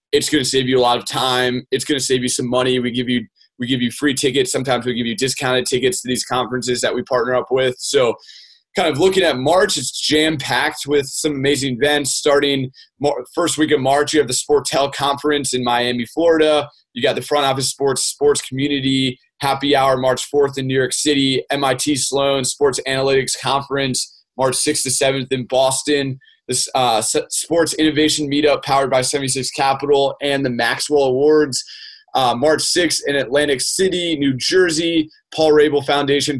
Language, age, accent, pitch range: English, 20-39, American, 130-150 Hz